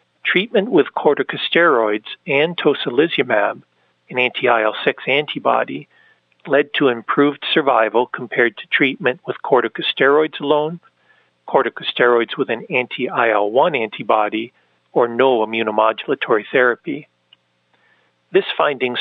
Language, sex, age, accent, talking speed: English, male, 50-69, American, 90 wpm